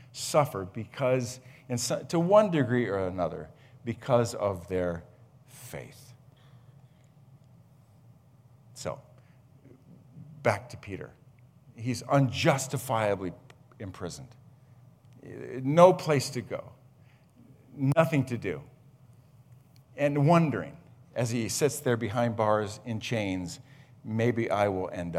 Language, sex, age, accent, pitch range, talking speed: English, male, 50-69, American, 110-135 Hz, 95 wpm